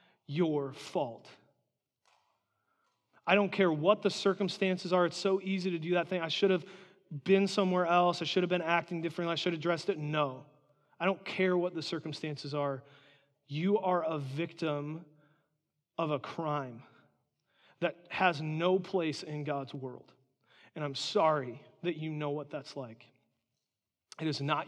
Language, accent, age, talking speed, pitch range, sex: English, American, 30-49, 165 wpm, 135-170 Hz, male